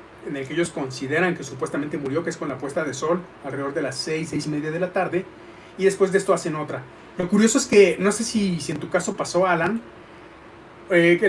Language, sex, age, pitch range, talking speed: Spanish, male, 30-49, 155-190 Hz, 245 wpm